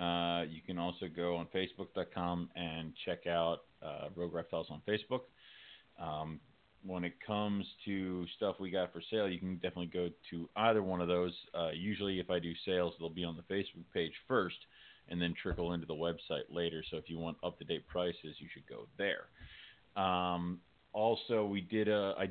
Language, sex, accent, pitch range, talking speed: English, male, American, 85-100 Hz, 180 wpm